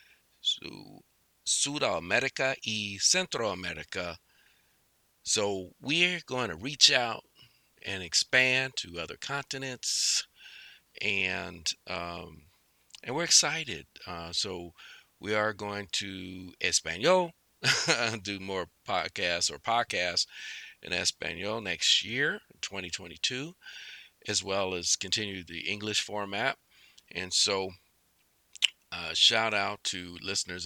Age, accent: 50-69, American